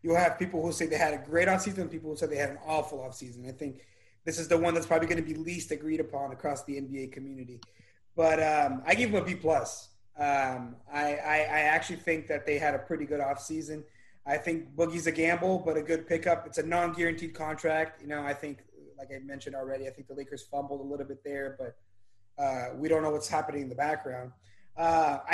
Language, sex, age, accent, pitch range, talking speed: English, male, 30-49, American, 135-170 Hz, 230 wpm